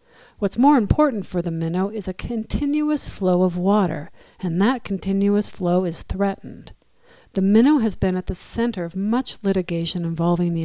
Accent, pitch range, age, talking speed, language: American, 175-210 Hz, 50-69, 170 wpm, English